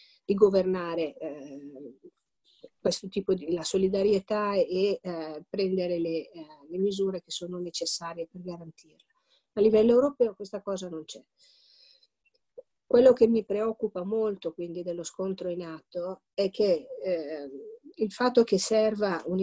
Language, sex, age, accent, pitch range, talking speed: Italian, female, 50-69, native, 170-210 Hz, 135 wpm